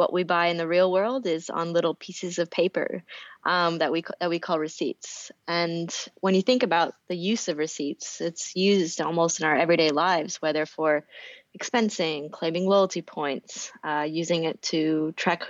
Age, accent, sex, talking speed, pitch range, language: 20-39, American, female, 180 wpm, 160-185 Hz, English